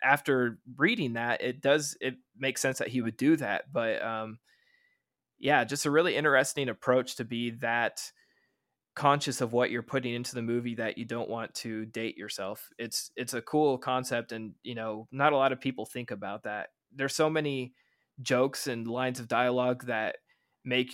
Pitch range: 115-130 Hz